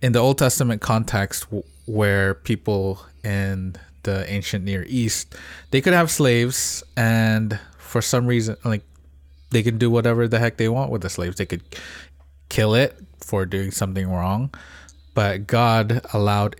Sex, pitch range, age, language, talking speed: male, 90-110 Hz, 20-39, English, 155 wpm